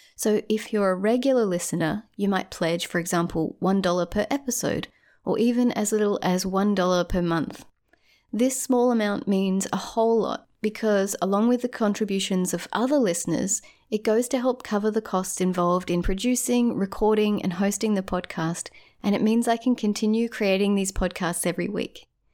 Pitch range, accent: 185-230 Hz, Australian